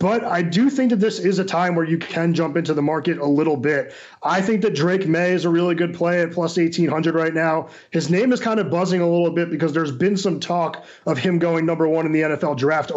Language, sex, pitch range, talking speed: English, male, 160-185 Hz, 265 wpm